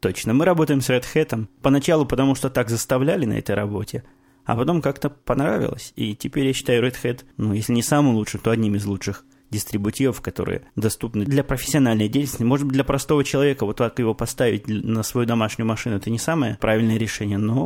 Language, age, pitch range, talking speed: Russian, 20-39, 115-140 Hz, 195 wpm